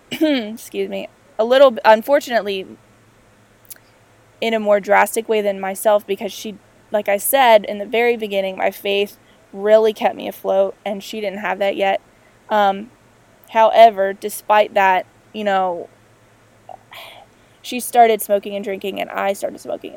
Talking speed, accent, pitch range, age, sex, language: 145 wpm, American, 195-220 Hz, 20-39, female, English